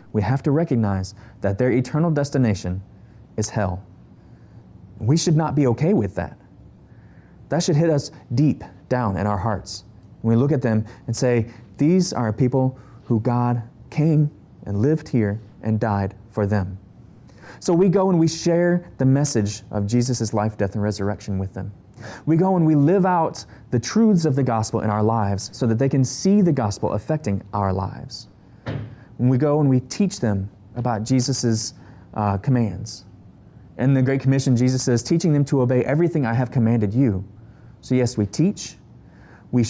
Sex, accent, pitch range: male, American, 105-140 Hz